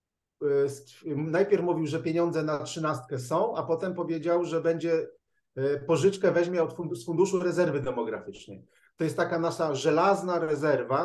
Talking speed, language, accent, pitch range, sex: 130 wpm, Polish, native, 145-195 Hz, male